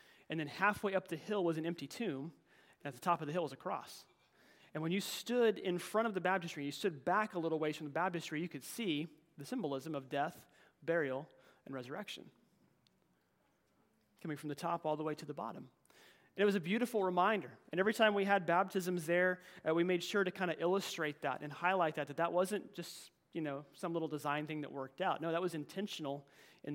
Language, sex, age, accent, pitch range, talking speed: English, male, 30-49, American, 165-200 Hz, 225 wpm